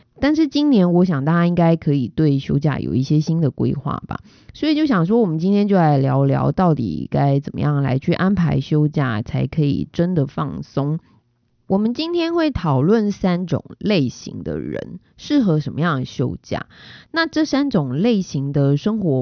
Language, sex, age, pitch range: Chinese, female, 20-39, 140-200 Hz